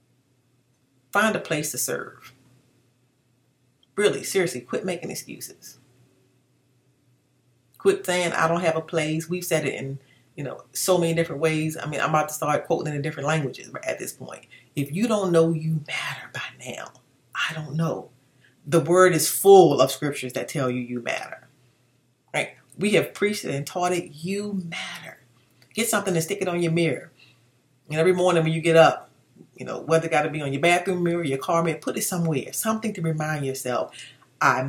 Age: 30-49